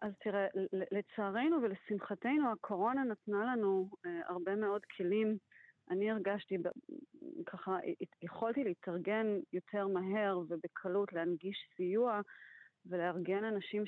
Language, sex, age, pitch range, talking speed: Hebrew, female, 30-49, 180-230 Hz, 100 wpm